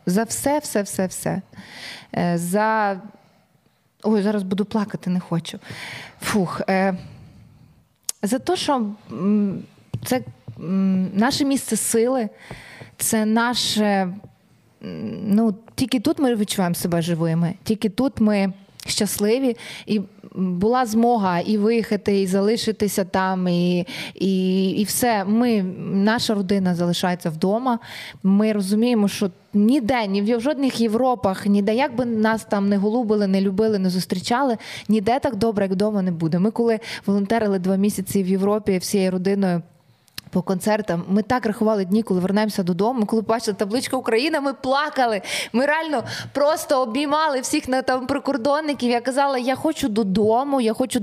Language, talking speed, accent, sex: Ukrainian, 135 wpm, native, female